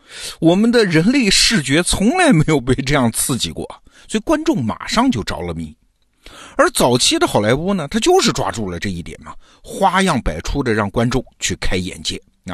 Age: 50-69